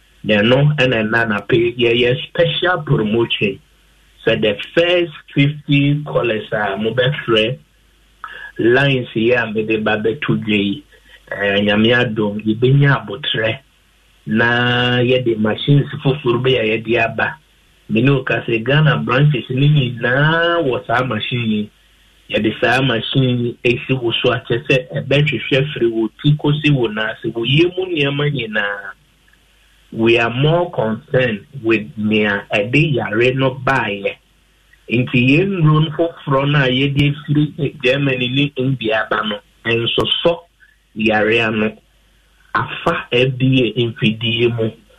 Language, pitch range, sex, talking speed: English, 115-140 Hz, male, 125 wpm